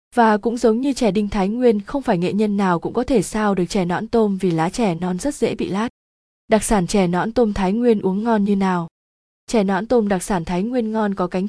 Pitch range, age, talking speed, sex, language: 185-230 Hz, 20-39, 260 wpm, female, Vietnamese